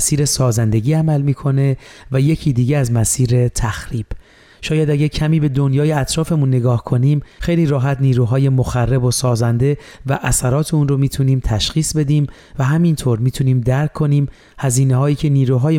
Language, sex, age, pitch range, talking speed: Persian, male, 30-49, 120-145 Hz, 150 wpm